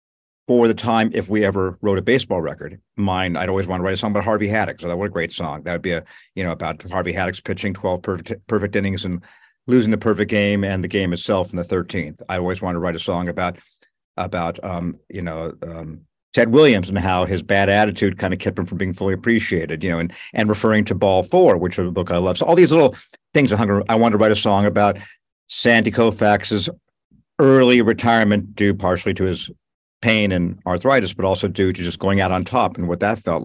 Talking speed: 235 wpm